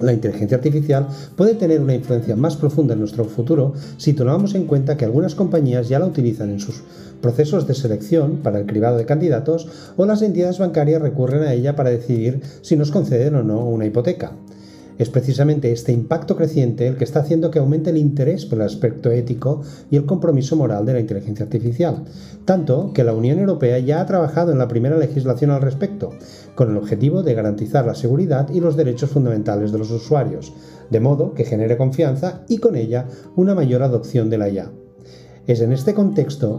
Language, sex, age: Spanish, male, 40-59